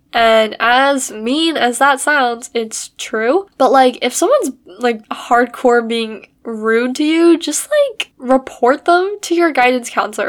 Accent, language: American, English